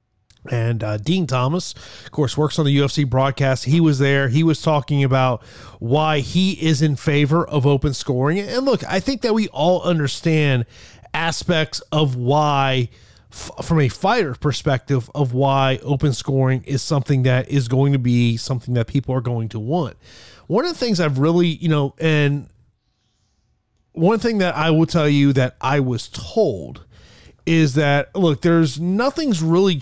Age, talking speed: 30-49, 170 wpm